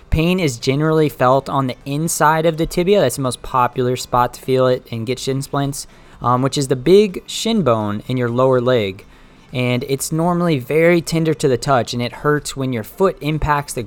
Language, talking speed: English, 210 wpm